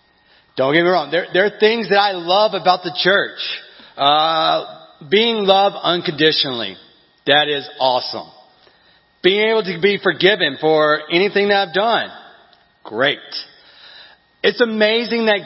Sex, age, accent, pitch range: male, 40-59, American, 155-205 Hz